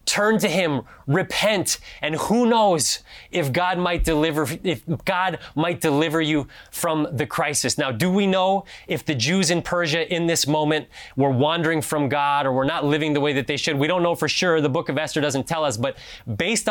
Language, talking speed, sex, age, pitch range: English, 210 wpm, male, 20-39, 150-185 Hz